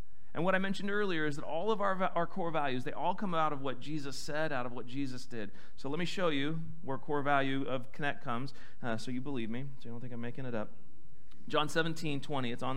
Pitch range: 120-160 Hz